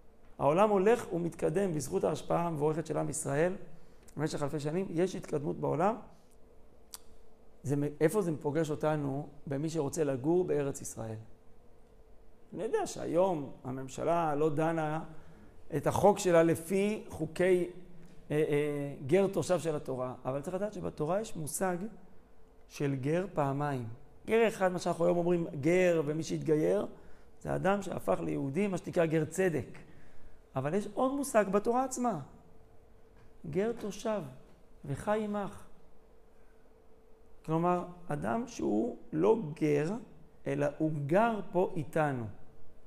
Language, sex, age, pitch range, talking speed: Hebrew, male, 40-59, 145-185 Hz, 120 wpm